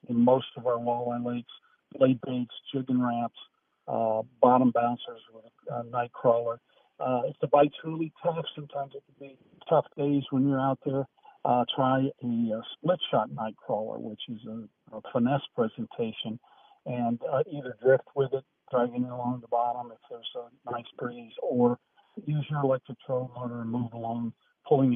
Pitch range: 115-140 Hz